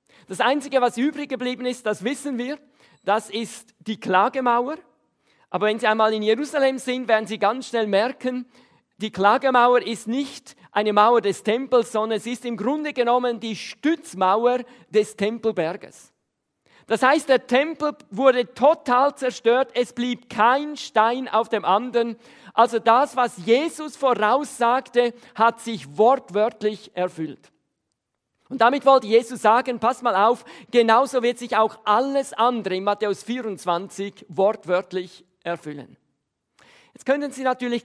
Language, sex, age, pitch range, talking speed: German, male, 40-59, 215-260 Hz, 140 wpm